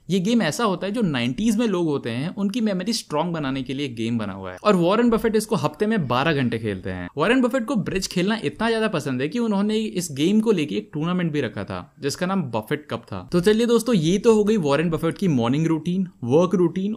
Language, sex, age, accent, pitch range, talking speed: Hindi, male, 20-39, native, 130-210 Hz, 250 wpm